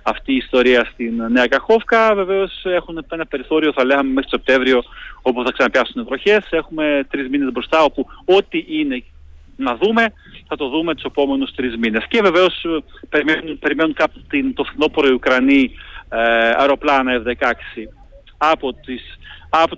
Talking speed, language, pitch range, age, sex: 145 wpm, Greek, 120-155 Hz, 40-59, male